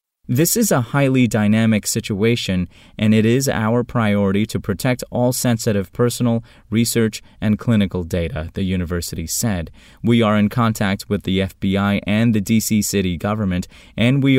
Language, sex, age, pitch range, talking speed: English, male, 20-39, 95-125 Hz, 155 wpm